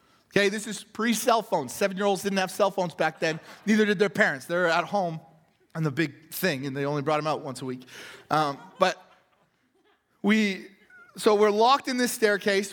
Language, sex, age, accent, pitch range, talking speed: English, male, 30-49, American, 200-265 Hz, 195 wpm